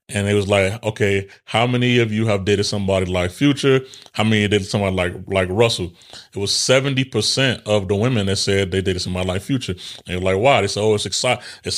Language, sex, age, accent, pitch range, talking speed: English, male, 30-49, American, 100-130 Hz, 225 wpm